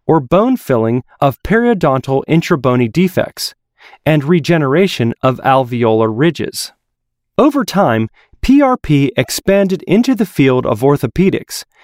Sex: male